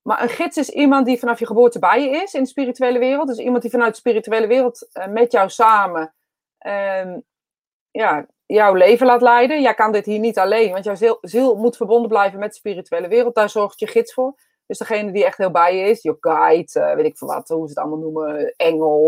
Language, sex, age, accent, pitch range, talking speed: Dutch, female, 30-49, Dutch, 200-250 Hz, 240 wpm